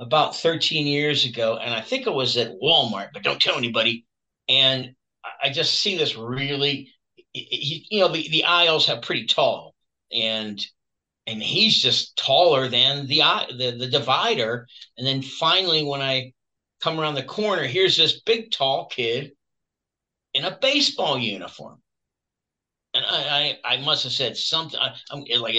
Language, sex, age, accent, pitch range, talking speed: English, male, 50-69, American, 130-165 Hz, 155 wpm